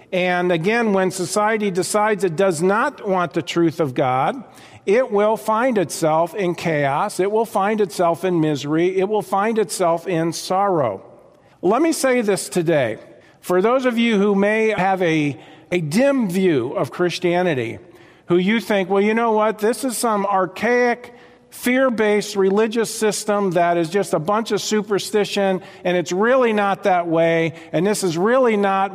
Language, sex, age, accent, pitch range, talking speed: English, male, 50-69, American, 180-225 Hz, 170 wpm